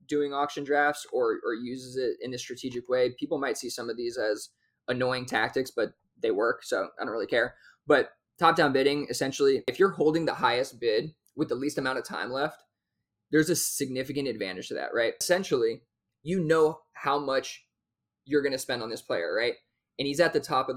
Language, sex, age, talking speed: English, male, 20-39, 205 wpm